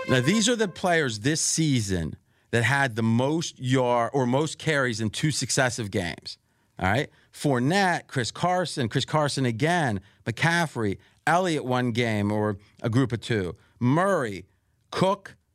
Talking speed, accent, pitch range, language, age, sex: 145 wpm, American, 115-165 Hz, English, 40-59, male